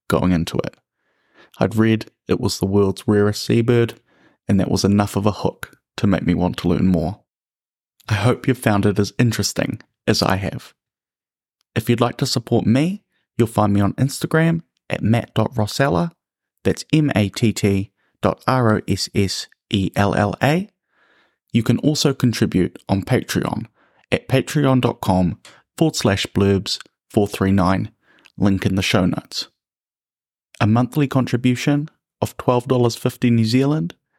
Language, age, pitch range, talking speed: English, 30-49, 100-125 Hz, 135 wpm